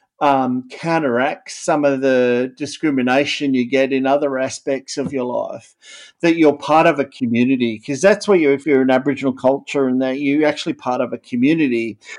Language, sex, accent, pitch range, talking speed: English, male, Australian, 125-145 Hz, 180 wpm